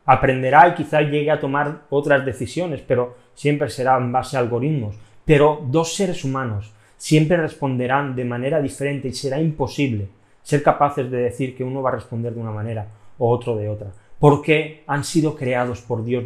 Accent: Spanish